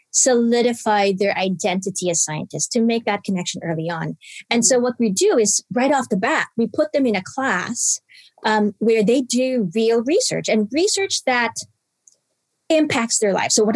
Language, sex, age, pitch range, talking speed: English, female, 30-49, 210-265 Hz, 180 wpm